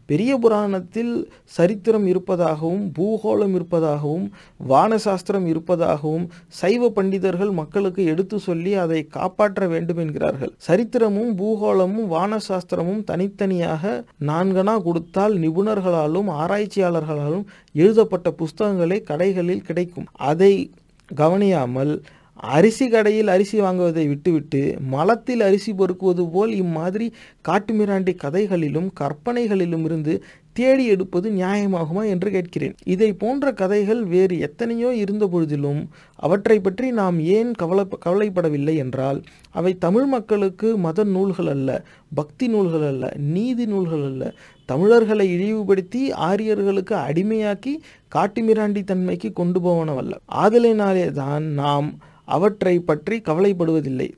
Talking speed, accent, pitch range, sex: 100 wpm, Indian, 165-210 Hz, male